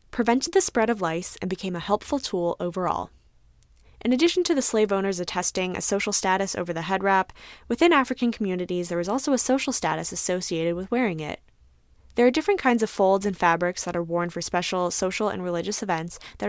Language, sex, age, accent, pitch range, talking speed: English, female, 10-29, American, 175-235 Hz, 205 wpm